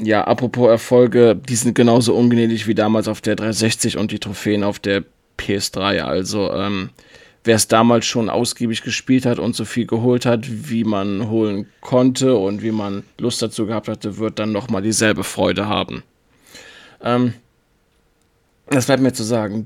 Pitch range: 110-125 Hz